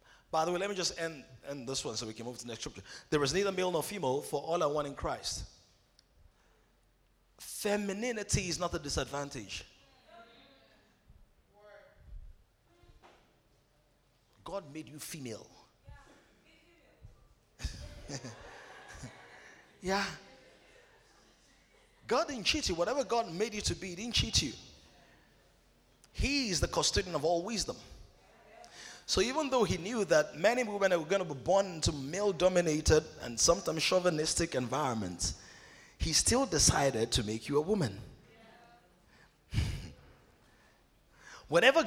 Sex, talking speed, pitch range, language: male, 130 wpm, 130-200 Hz, English